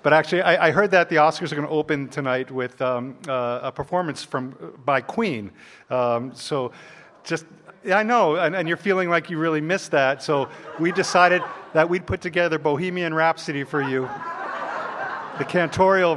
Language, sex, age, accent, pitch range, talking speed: English, male, 50-69, American, 130-165 Hz, 180 wpm